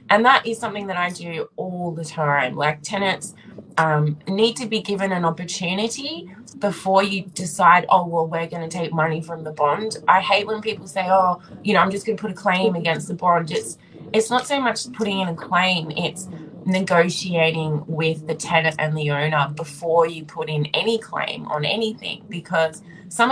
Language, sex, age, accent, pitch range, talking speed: English, female, 20-39, Australian, 155-200 Hz, 200 wpm